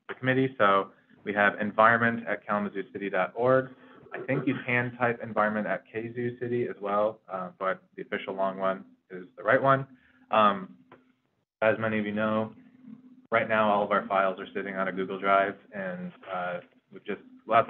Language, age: English, 20-39